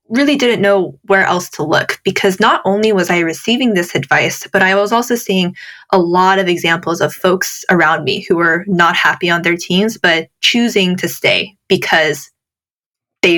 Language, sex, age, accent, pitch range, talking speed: English, female, 10-29, American, 180-215 Hz, 185 wpm